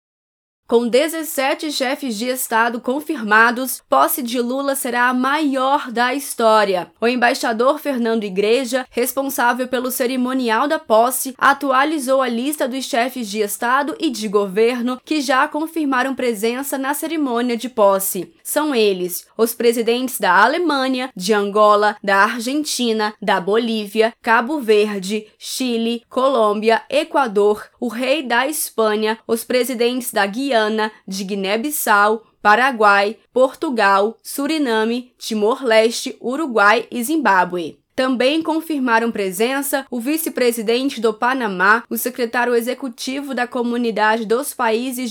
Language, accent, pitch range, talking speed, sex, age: Portuguese, Brazilian, 220-270 Hz, 115 wpm, female, 10-29